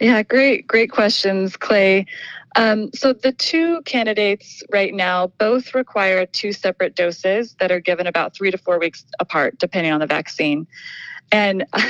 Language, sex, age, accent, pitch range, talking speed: English, female, 20-39, American, 175-230 Hz, 155 wpm